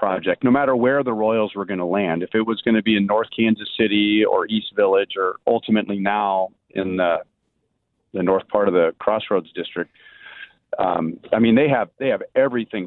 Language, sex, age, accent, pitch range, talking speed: English, male, 40-59, American, 95-115 Hz, 200 wpm